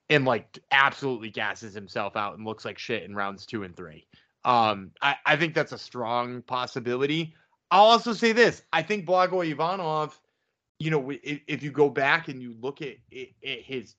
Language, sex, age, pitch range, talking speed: English, male, 20-39, 125-185 Hz, 190 wpm